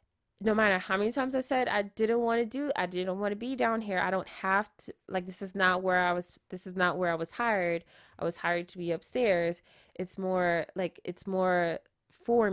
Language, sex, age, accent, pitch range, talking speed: English, female, 20-39, American, 180-245 Hz, 235 wpm